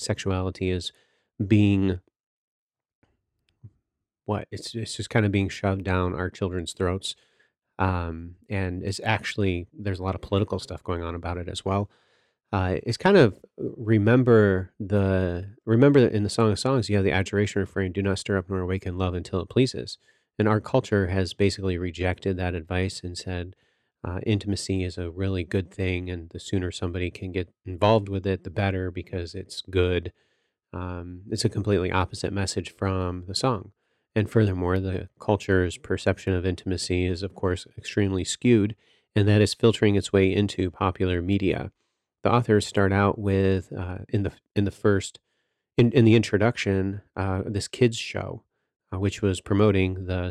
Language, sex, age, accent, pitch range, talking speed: English, male, 30-49, American, 90-105 Hz, 170 wpm